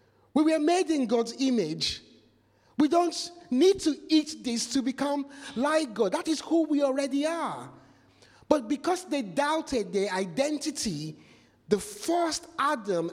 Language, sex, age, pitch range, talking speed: English, male, 50-69, 165-260 Hz, 140 wpm